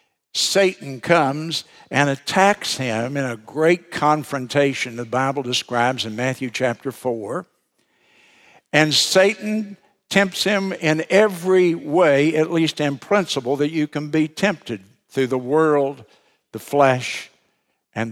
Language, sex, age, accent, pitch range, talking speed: English, male, 60-79, American, 130-185 Hz, 125 wpm